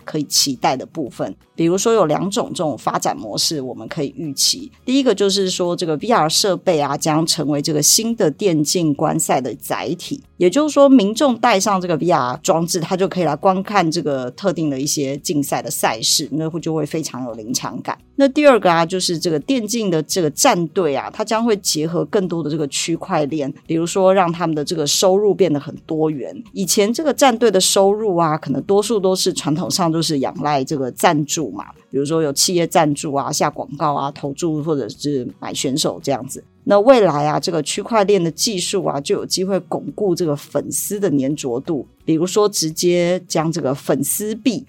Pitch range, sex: 155-195 Hz, female